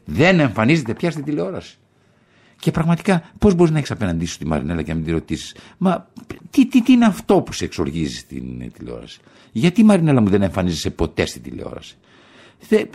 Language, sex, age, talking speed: Greek, male, 60-79, 185 wpm